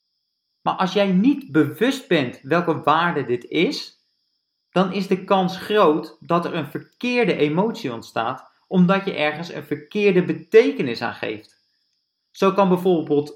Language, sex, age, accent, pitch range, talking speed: Dutch, male, 40-59, Dutch, 145-190 Hz, 145 wpm